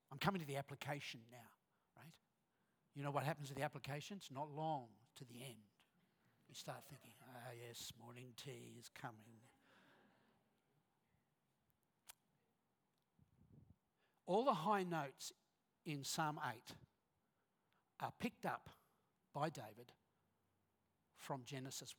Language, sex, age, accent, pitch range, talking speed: English, male, 60-79, Australian, 125-175 Hz, 115 wpm